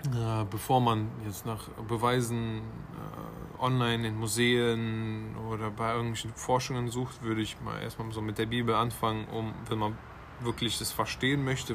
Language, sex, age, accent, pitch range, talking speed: German, male, 20-39, German, 110-125 Hz, 160 wpm